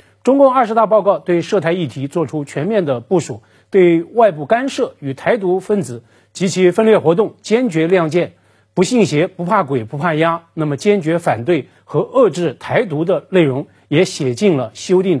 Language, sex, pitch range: Chinese, male, 140-200 Hz